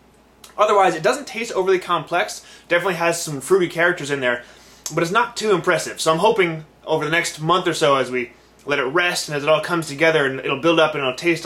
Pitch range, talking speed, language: 140-180 Hz, 230 wpm, English